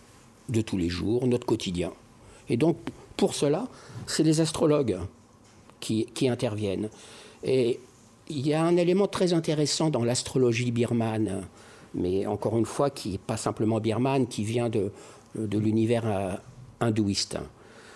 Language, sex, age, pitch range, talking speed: French, male, 50-69, 110-140 Hz, 140 wpm